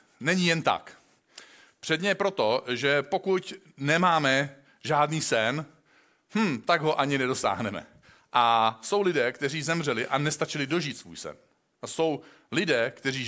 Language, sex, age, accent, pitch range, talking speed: Czech, male, 40-59, native, 125-160 Hz, 135 wpm